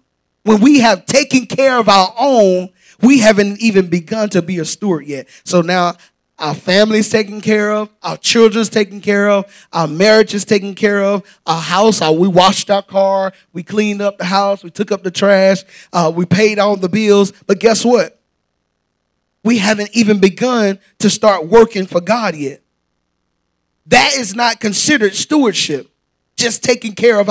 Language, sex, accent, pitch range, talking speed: English, male, American, 160-220 Hz, 175 wpm